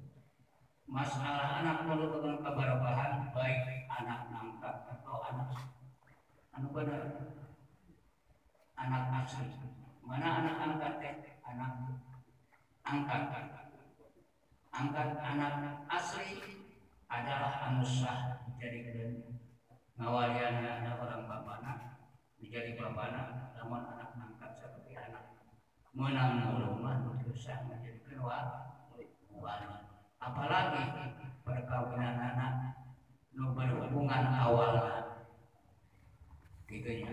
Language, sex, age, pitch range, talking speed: Indonesian, male, 50-69, 120-135 Hz, 70 wpm